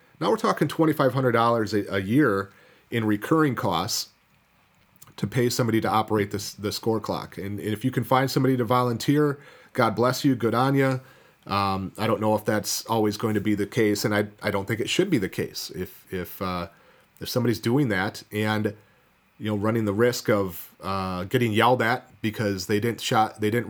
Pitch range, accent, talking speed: 105-130 Hz, American, 210 wpm